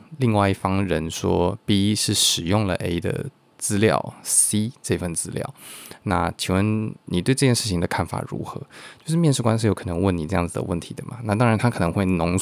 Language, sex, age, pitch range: Chinese, male, 20-39, 90-120 Hz